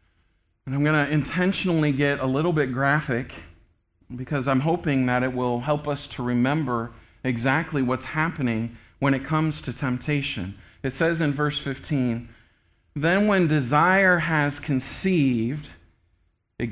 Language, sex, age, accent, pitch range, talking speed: English, male, 40-59, American, 110-150 Hz, 140 wpm